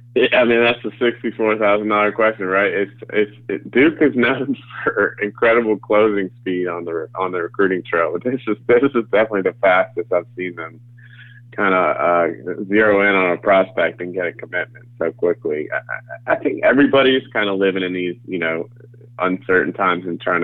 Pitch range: 90-120 Hz